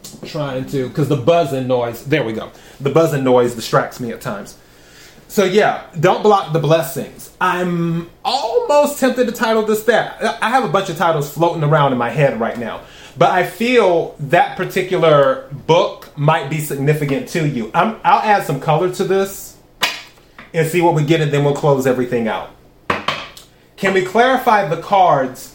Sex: male